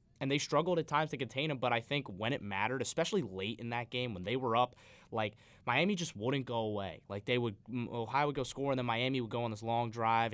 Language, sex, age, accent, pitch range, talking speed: English, male, 20-39, American, 110-135 Hz, 260 wpm